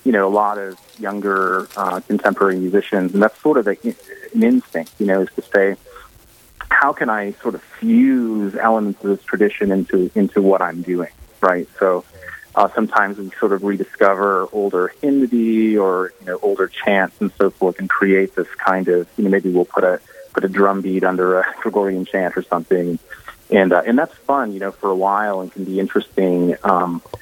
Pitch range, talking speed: 95-105 Hz, 200 wpm